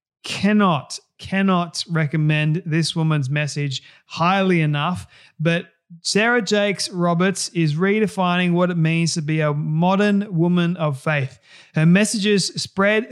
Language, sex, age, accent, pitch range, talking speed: English, male, 30-49, Australian, 155-185 Hz, 125 wpm